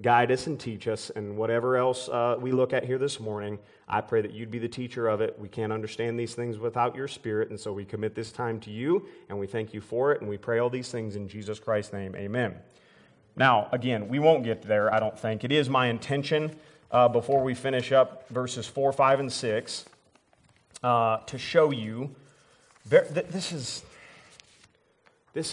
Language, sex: English, male